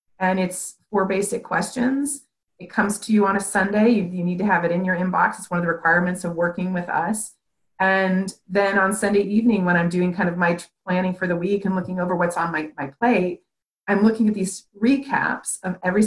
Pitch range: 175-210 Hz